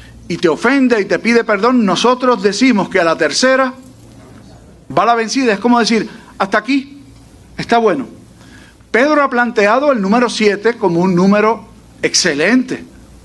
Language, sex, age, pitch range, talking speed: Spanish, male, 40-59, 190-250 Hz, 150 wpm